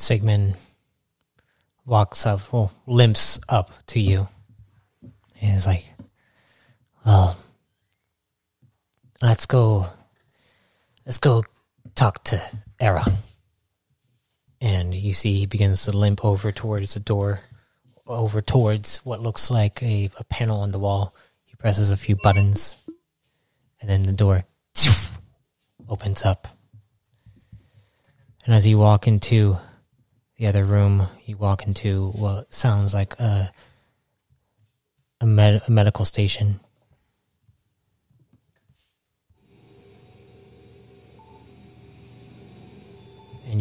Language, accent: English, American